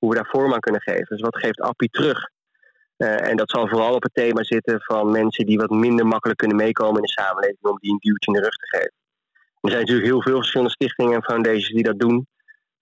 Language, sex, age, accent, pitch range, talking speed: Dutch, male, 20-39, Dutch, 115-130 Hz, 250 wpm